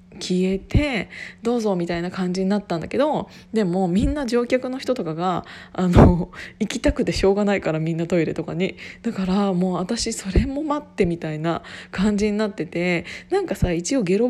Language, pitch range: Japanese, 180-255 Hz